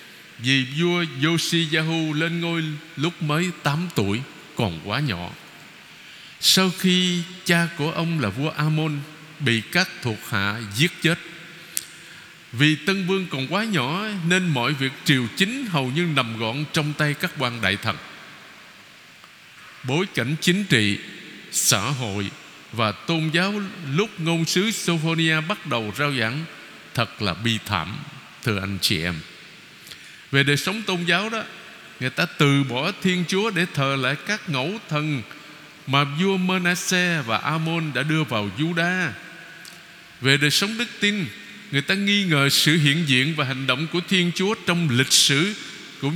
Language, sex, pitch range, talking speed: Vietnamese, male, 135-175 Hz, 155 wpm